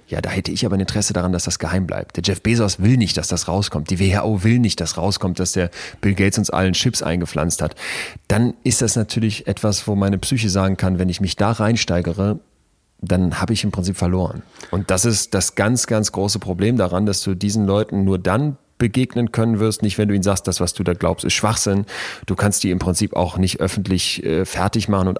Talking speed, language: 235 wpm, German